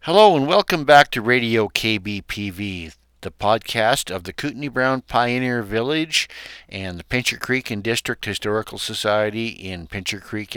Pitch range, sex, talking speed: 95-125 Hz, male, 150 wpm